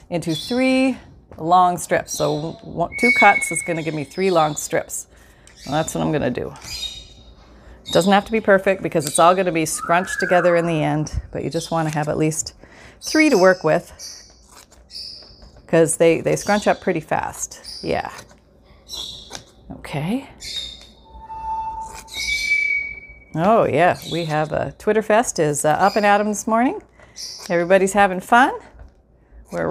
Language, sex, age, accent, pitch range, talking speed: English, female, 40-59, American, 165-230 Hz, 160 wpm